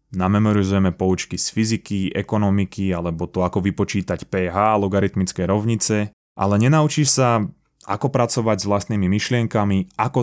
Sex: male